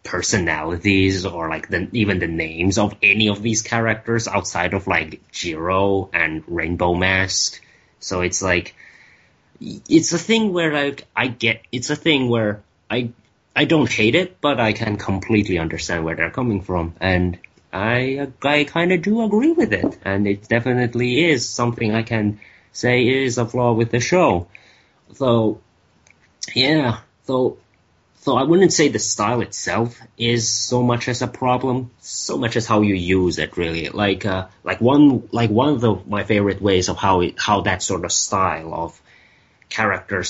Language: English